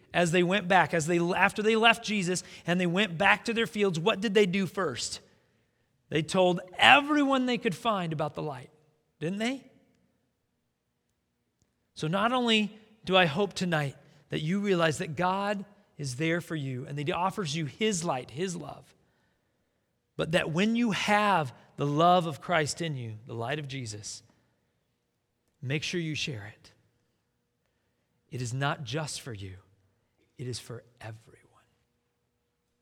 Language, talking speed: English, 160 wpm